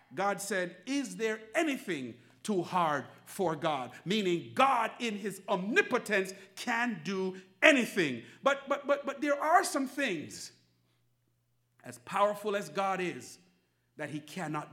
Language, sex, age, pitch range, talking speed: English, male, 50-69, 175-255 Hz, 135 wpm